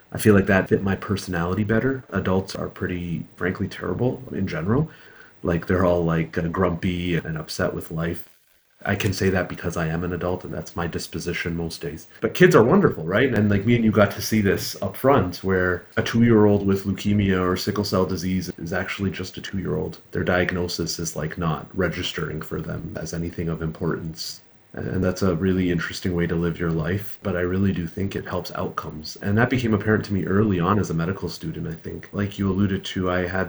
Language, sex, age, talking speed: English, male, 30-49, 215 wpm